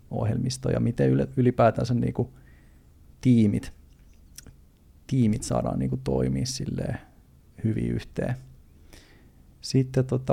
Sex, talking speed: male, 80 wpm